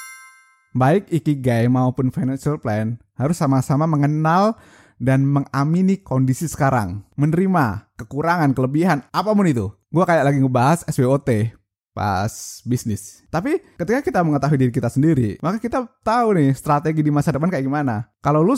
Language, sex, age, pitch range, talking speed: Indonesian, male, 20-39, 130-180 Hz, 140 wpm